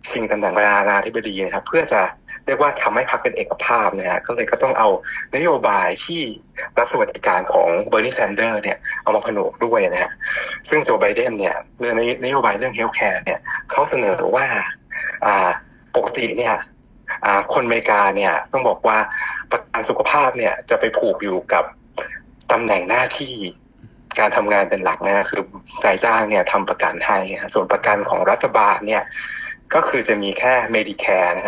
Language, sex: Thai, male